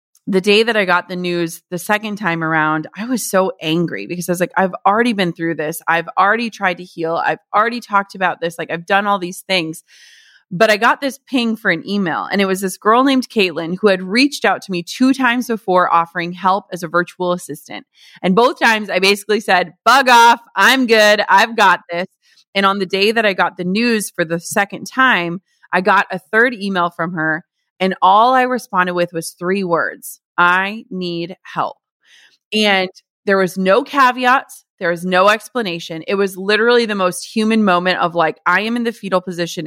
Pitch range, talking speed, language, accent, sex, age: 175-220 Hz, 210 wpm, English, American, female, 30-49